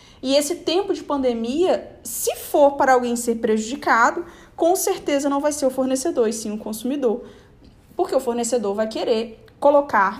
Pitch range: 225-280 Hz